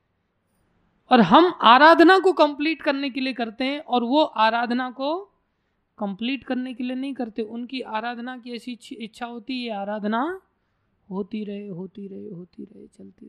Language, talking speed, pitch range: Hindi, 160 wpm, 190-275 Hz